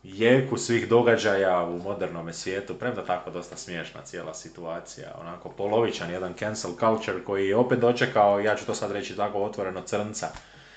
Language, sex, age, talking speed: Croatian, male, 30-49, 160 wpm